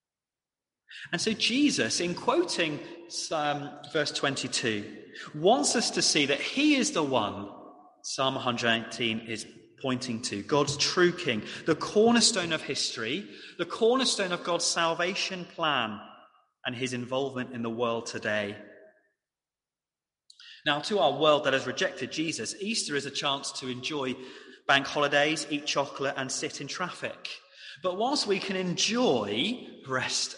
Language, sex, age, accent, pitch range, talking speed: English, male, 30-49, British, 130-185 Hz, 135 wpm